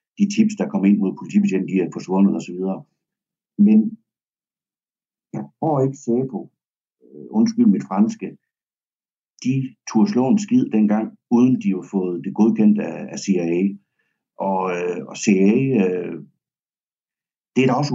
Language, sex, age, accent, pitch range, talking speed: Danish, male, 60-79, native, 95-145 Hz, 140 wpm